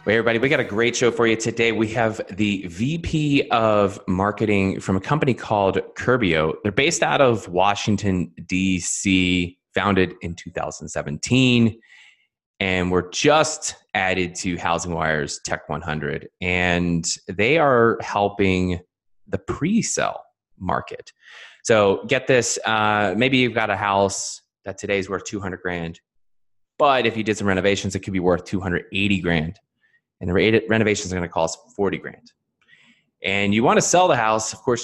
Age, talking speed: 20-39, 150 wpm